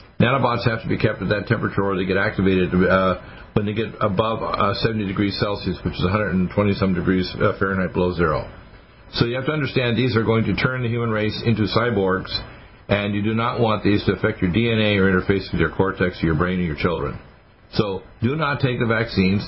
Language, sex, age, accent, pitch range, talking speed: English, male, 50-69, American, 95-115 Hz, 215 wpm